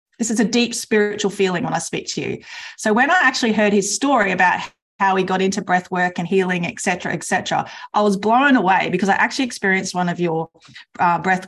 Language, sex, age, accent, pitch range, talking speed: English, female, 30-49, Australian, 175-210 Hz, 230 wpm